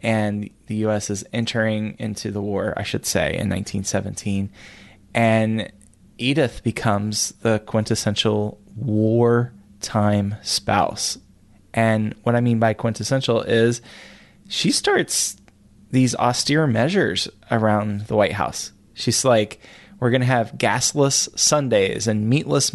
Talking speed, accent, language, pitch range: 120 wpm, American, English, 105-120 Hz